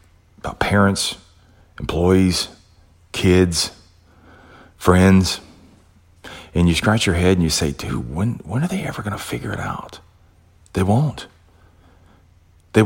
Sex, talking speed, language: male, 125 wpm, English